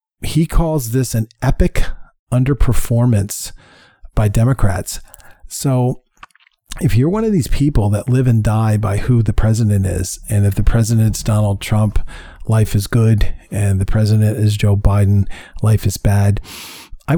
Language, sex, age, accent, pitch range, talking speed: English, male, 40-59, American, 105-125 Hz, 150 wpm